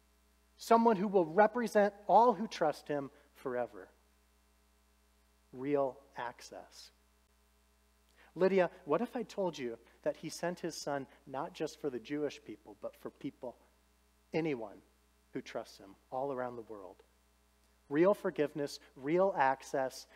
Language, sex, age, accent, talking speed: English, male, 40-59, American, 130 wpm